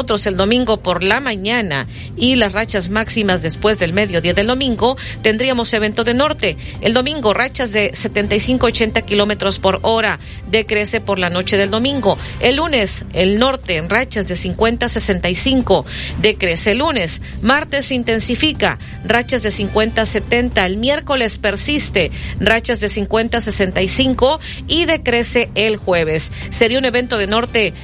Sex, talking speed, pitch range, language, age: female, 140 wpm, 200-250 Hz, Spanish, 40-59